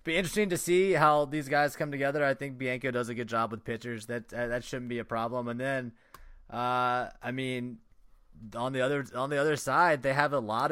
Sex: male